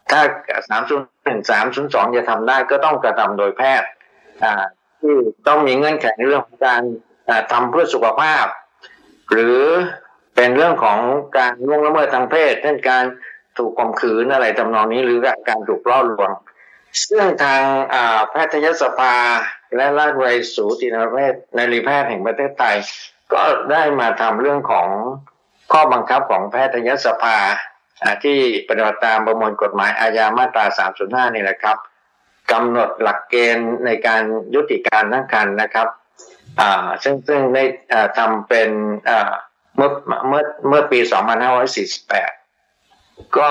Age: 60-79